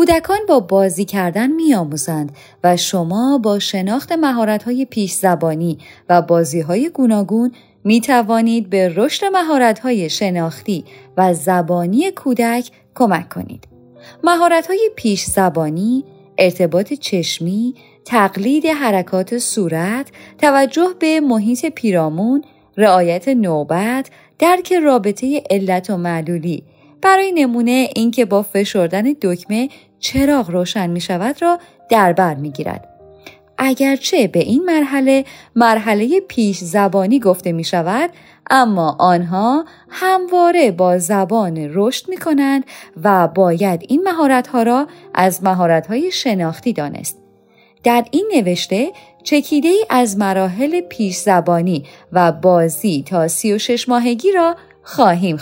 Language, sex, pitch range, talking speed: Persian, female, 180-270 Hz, 115 wpm